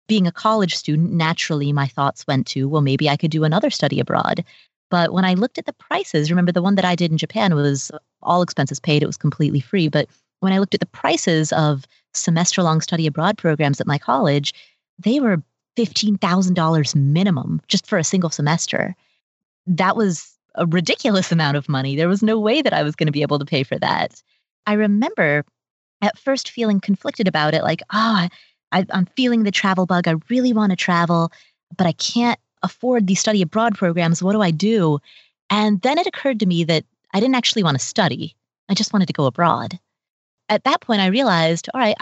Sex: female